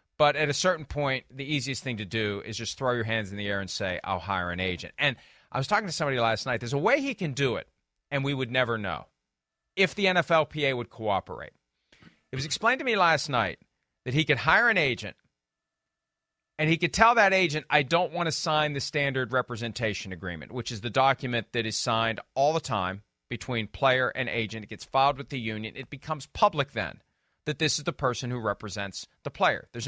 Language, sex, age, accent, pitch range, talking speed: English, male, 40-59, American, 120-165 Hz, 225 wpm